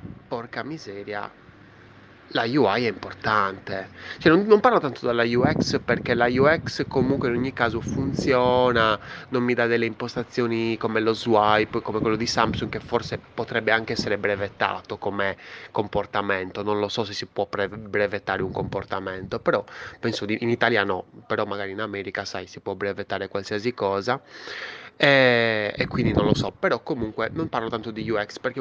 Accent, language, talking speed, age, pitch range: native, Italian, 170 wpm, 20-39, 105-125 Hz